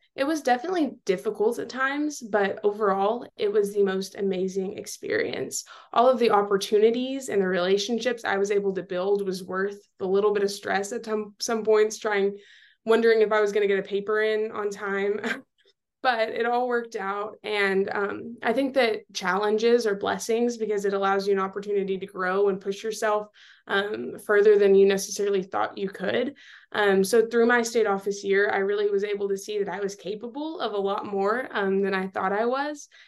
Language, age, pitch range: English, 20-39, 195-225 Hz